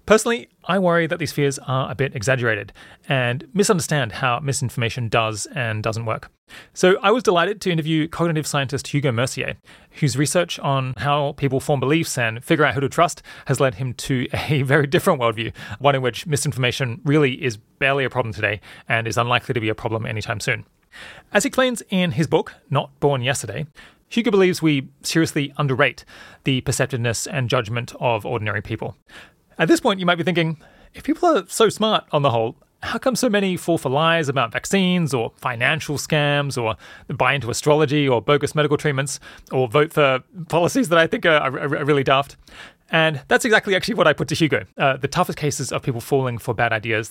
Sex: male